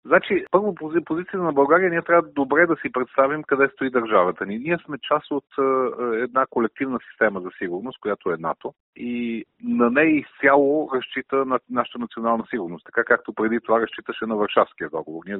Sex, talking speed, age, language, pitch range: male, 185 wpm, 40-59, Bulgarian, 105-140 Hz